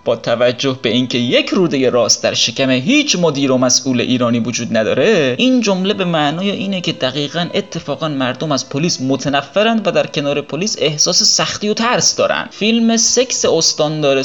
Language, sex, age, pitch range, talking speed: Persian, male, 30-49, 130-180 Hz, 175 wpm